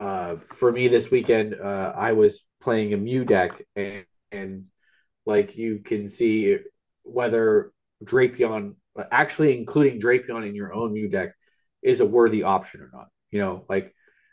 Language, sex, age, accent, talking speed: English, male, 20-39, American, 155 wpm